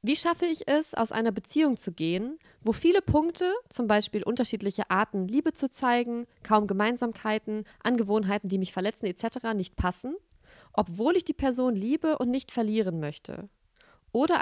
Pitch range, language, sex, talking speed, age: 205-260 Hz, German, female, 160 wpm, 20-39